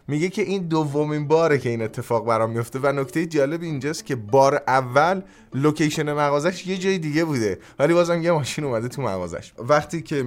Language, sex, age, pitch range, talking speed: Persian, male, 30-49, 110-150 Hz, 185 wpm